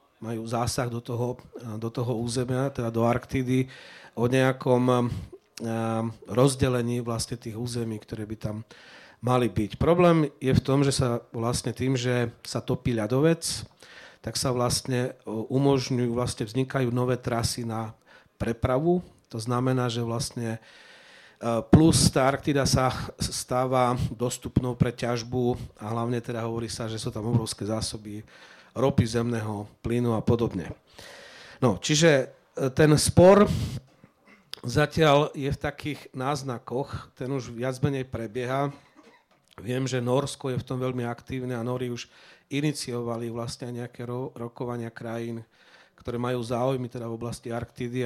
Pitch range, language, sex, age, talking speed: 115-130 Hz, Slovak, male, 40-59, 130 wpm